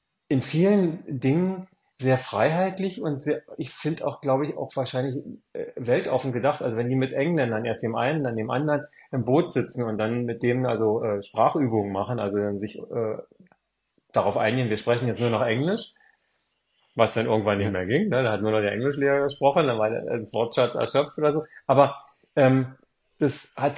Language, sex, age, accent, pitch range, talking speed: German, male, 30-49, German, 105-140 Hz, 190 wpm